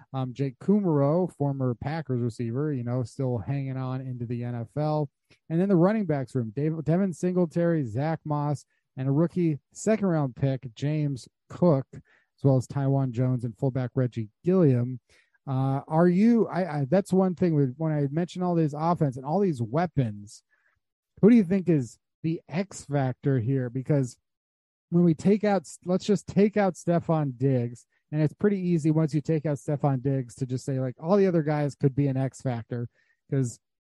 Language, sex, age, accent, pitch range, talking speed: English, male, 30-49, American, 130-160 Hz, 185 wpm